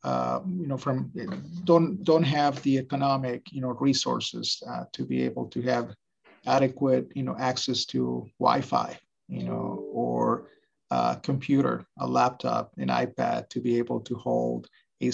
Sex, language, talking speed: male, English, 155 wpm